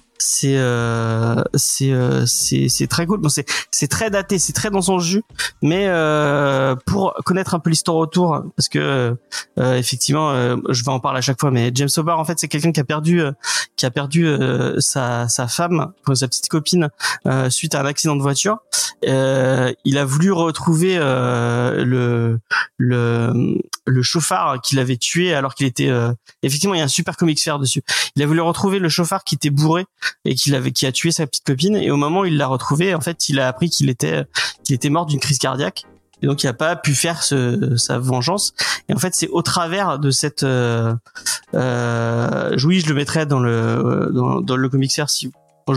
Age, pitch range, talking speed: 30-49, 130-165 Hz, 215 wpm